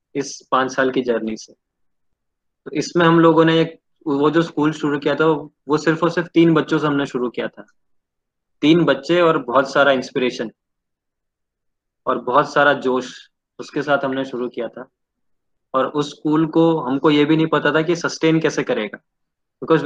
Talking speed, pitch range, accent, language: 180 wpm, 130-150 Hz, Indian, English